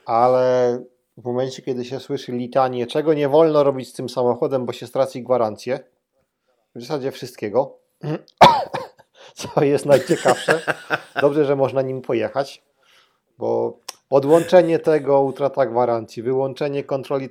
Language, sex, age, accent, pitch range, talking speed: Polish, male, 40-59, native, 125-145 Hz, 125 wpm